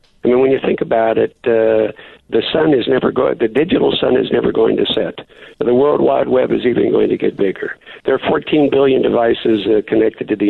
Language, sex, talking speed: English, male, 230 wpm